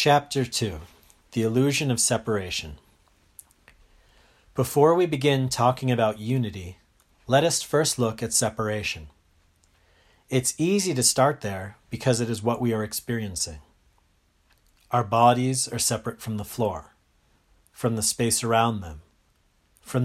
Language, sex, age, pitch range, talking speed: English, male, 40-59, 85-125 Hz, 130 wpm